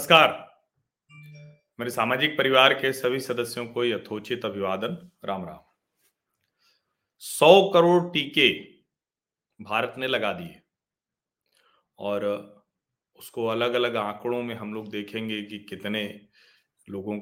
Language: Hindi